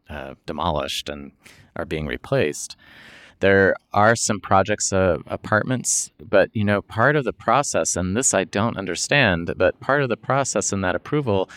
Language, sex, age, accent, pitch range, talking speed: English, male, 30-49, American, 85-110 Hz, 165 wpm